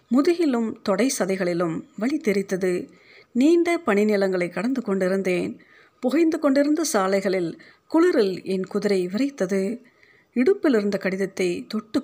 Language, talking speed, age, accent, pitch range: Tamil, 95 wpm, 50-69, native, 180-250 Hz